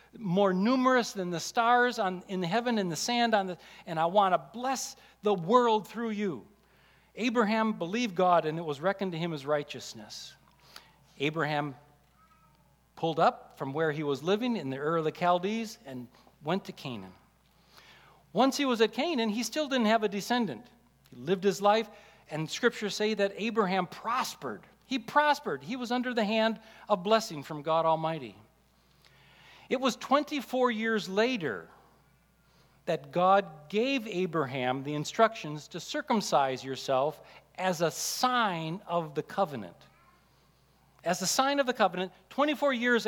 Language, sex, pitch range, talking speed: English, male, 165-230 Hz, 150 wpm